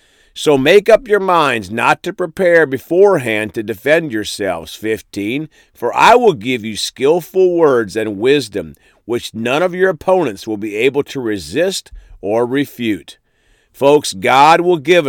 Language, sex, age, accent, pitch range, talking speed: English, male, 50-69, American, 110-165 Hz, 150 wpm